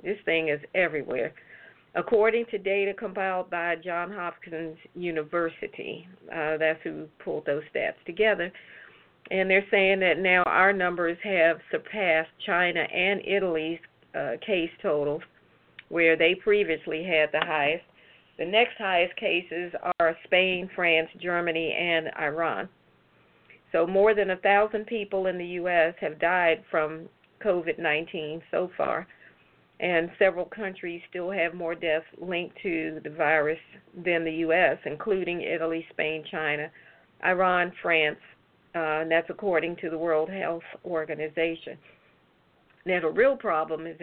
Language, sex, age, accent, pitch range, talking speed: English, female, 50-69, American, 160-185 Hz, 135 wpm